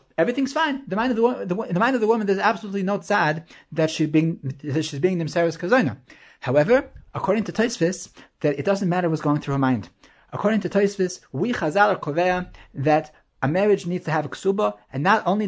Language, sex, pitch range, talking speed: English, male, 145-200 Hz, 200 wpm